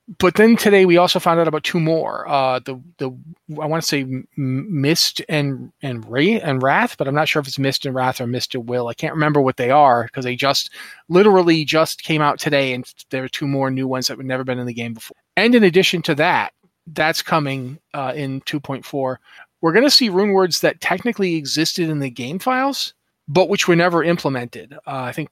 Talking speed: 230 wpm